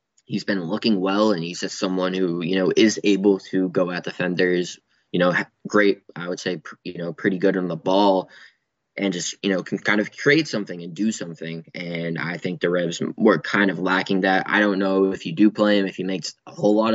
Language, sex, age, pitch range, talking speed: English, male, 20-39, 90-100 Hz, 235 wpm